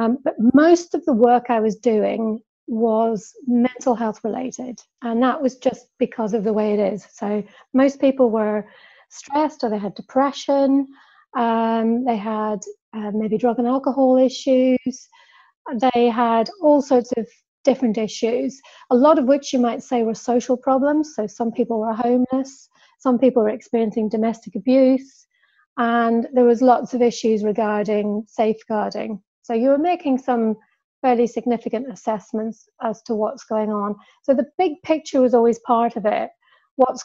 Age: 40-59